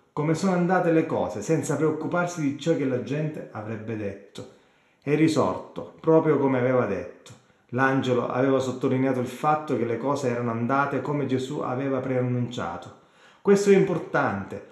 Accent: native